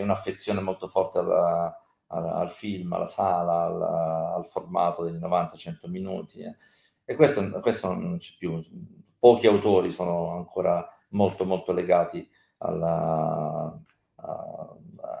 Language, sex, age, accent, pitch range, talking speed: Italian, male, 50-69, native, 85-105 Hz, 120 wpm